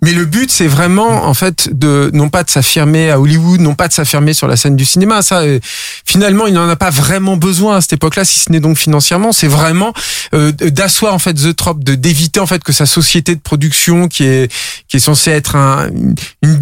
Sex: male